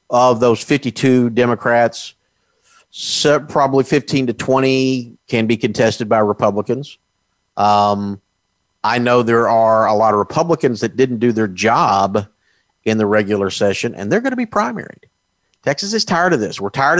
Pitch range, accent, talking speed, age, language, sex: 110-180 Hz, American, 160 wpm, 50-69, English, male